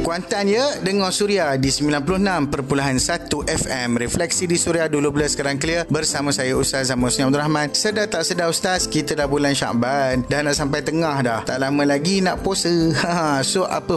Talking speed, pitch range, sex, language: 175 wpm, 130-170 Hz, male, Malay